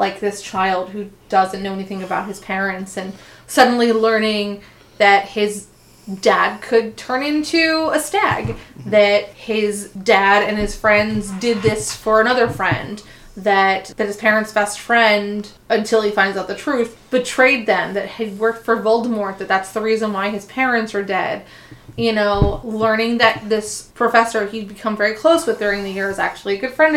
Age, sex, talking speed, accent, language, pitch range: 20-39, female, 175 wpm, American, English, 200-235 Hz